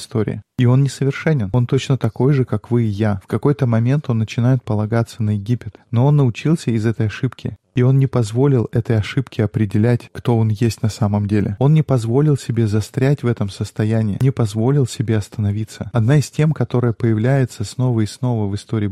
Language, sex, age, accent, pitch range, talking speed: Russian, male, 20-39, native, 110-135 Hz, 195 wpm